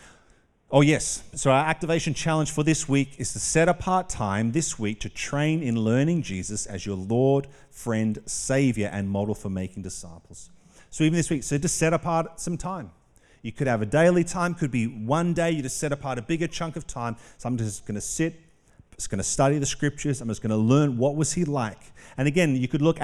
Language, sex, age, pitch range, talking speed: English, male, 40-59, 105-145 Hz, 225 wpm